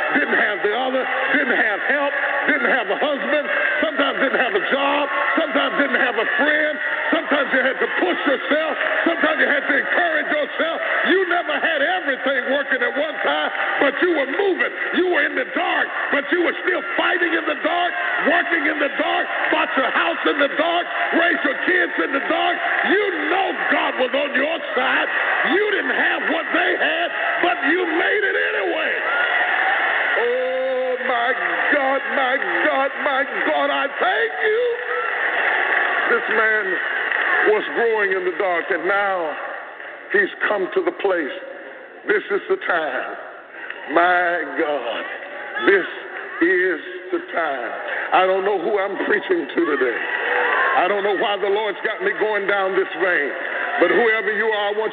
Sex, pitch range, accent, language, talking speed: male, 270-375 Hz, American, English, 165 wpm